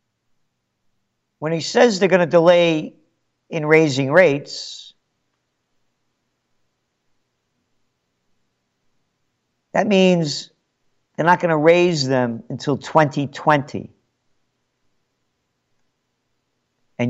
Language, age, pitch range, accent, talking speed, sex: English, 50-69, 125-195 Hz, American, 75 wpm, male